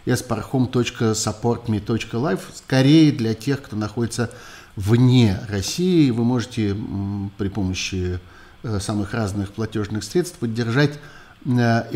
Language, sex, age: Russian, male, 50-69